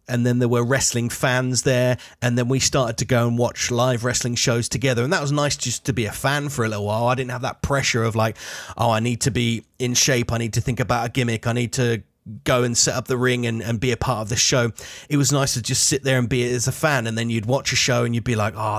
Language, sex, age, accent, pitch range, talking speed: English, male, 30-49, British, 115-135 Hz, 295 wpm